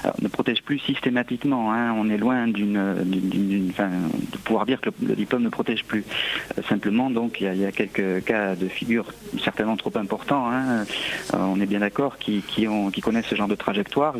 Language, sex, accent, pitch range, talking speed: French, male, French, 105-125 Hz, 230 wpm